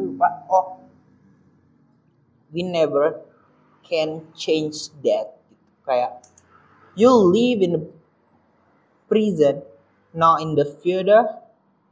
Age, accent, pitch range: 30-49, native, 140-185 Hz